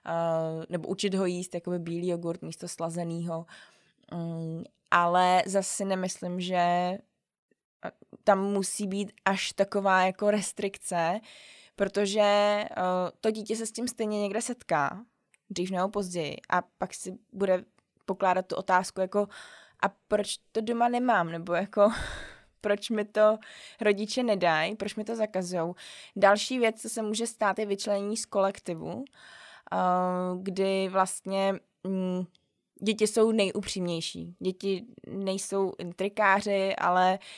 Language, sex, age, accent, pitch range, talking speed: Czech, female, 20-39, native, 185-220 Hz, 120 wpm